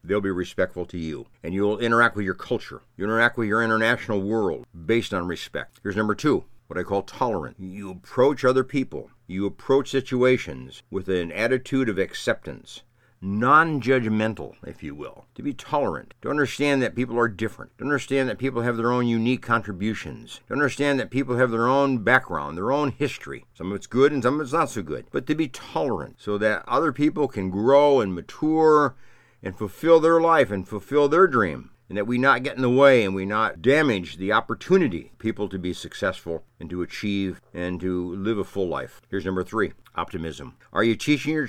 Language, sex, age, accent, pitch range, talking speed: English, male, 60-79, American, 100-135 Hz, 200 wpm